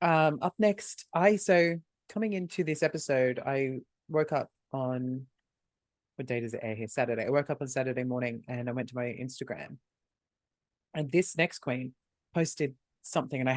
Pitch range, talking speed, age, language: 125-160 Hz, 175 wpm, 30-49, English